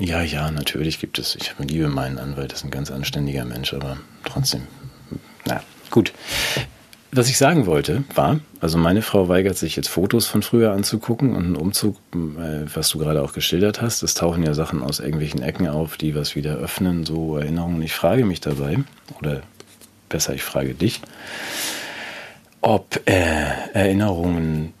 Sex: male